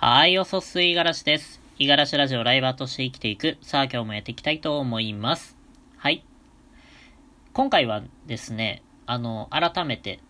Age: 20-39